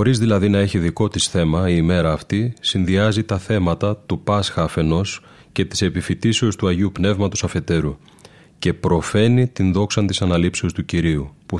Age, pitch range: 30-49, 85-105 Hz